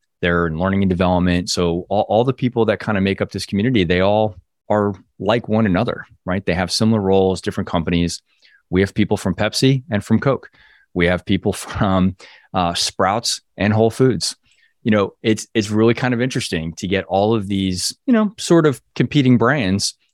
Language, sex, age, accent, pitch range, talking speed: English, male, 20-39, American, 90-110 Hz, 195 wpm